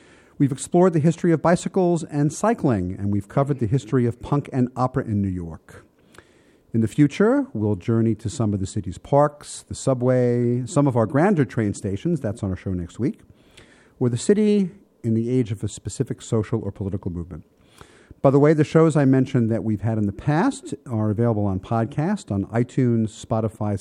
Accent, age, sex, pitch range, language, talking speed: American, 50-69, male, 105-145 Hz, English, 195 wpm